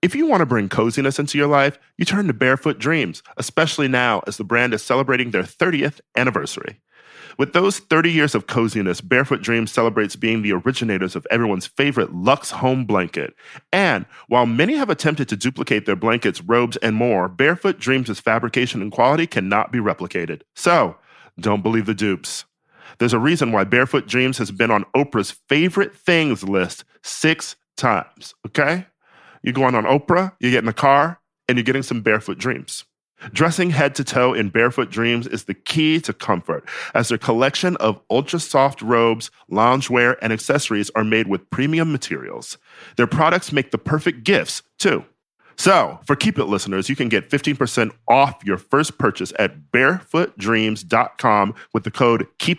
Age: 40-59